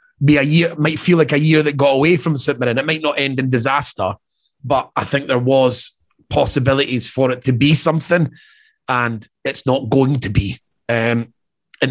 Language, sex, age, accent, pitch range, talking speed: English, male, 30-49, British, 125-155 Hz, 195 wpm